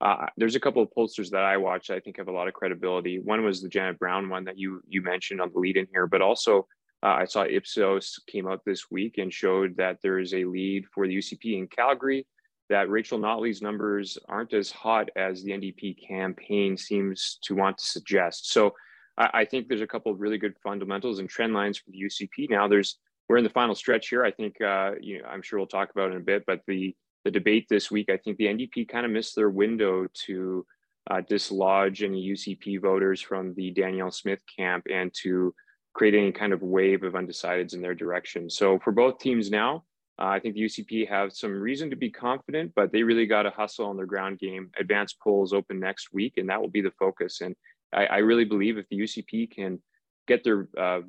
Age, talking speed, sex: 20-39, 225 wpm, male